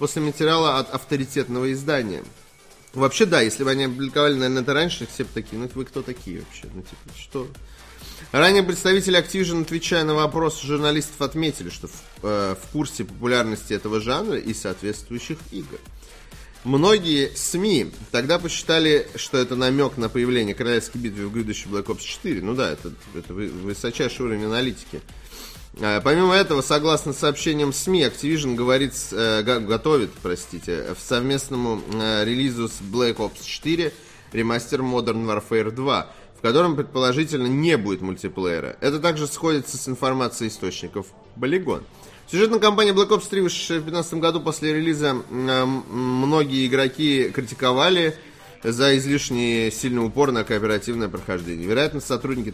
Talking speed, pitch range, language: 145 wpm, 110-150 Hz, Russian